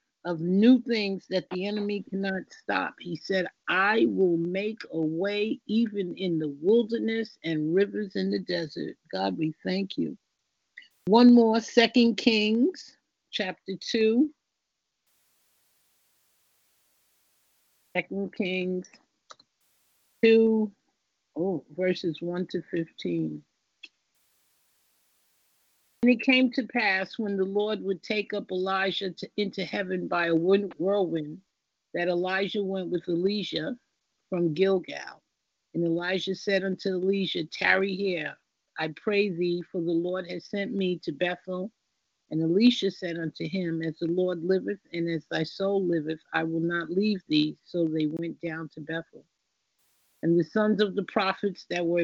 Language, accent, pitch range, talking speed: English, American, 170-205 Hz, 135 wpm